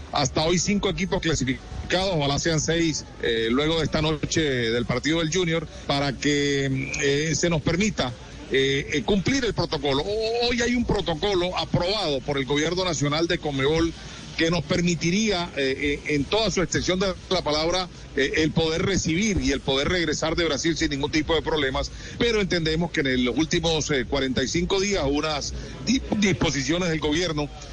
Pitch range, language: 140-175 Hz, Spanish